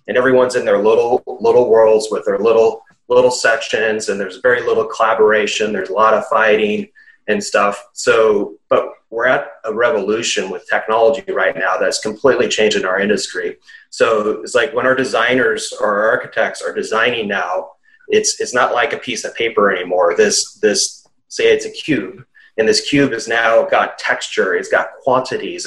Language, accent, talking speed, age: English, American, 175 wpm, 30-49